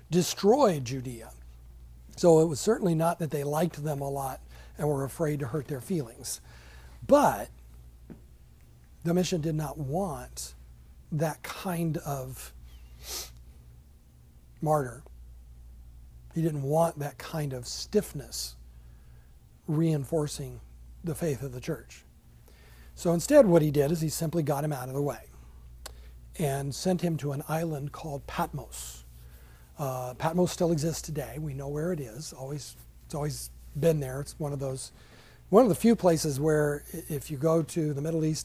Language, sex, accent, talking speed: English, male, American, 150 wpm